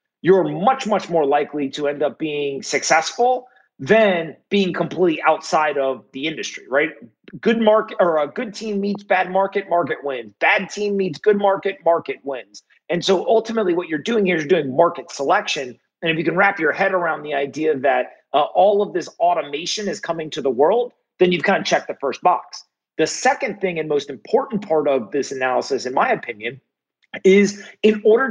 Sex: male